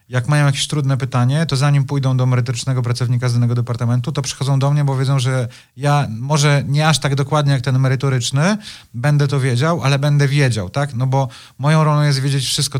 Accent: native